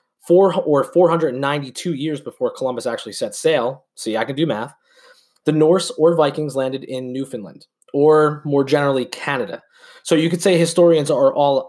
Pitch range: 125-175 Hz